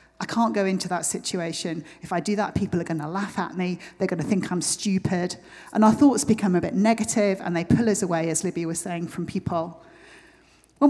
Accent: British